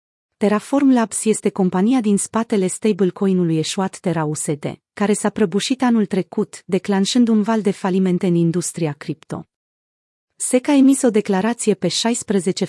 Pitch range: 175-220 Hz